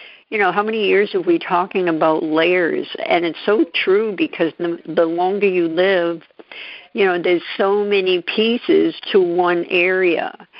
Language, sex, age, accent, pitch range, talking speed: English, female, 60-79, American, 170-225 Hz, 165 wpm